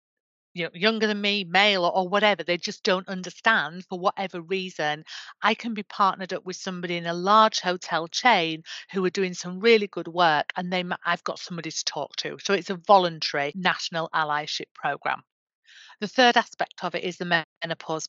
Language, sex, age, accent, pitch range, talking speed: English, female, 40-59, British, 160-185 Hz, 190 wpm